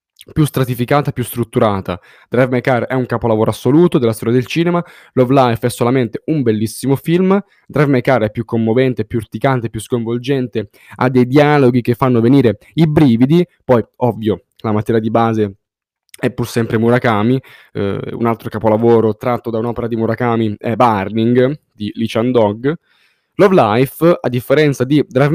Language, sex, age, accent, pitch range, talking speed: Italian, male, 10-29, native, 115-150 Hz, 165 wpm